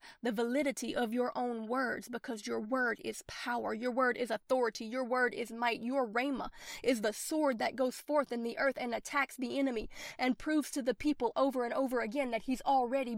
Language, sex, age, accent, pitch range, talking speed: English, female, 30-49, American, 240-280 Hz, 210 wpm